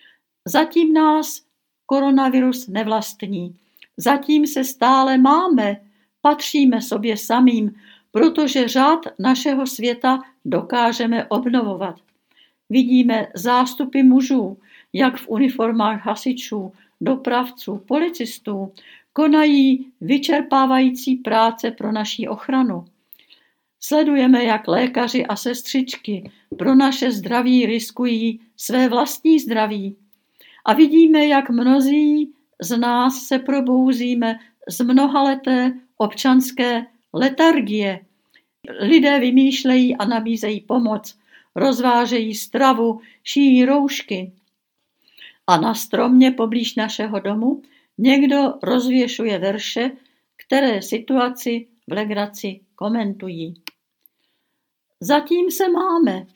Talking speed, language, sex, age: 85 wpm, Czech, female, 70-89